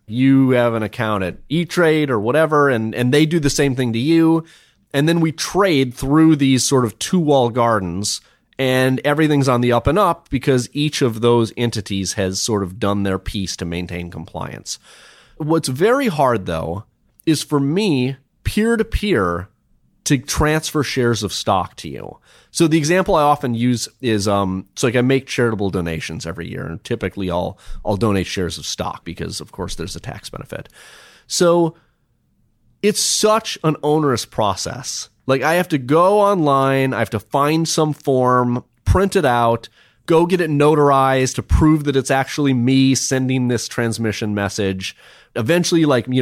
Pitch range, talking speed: 110-150 Hz, 170 wpm